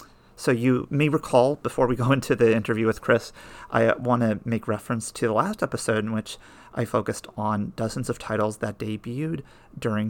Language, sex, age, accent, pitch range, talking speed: English, male, 30-49, American, 110-125 Hz, 190 wpm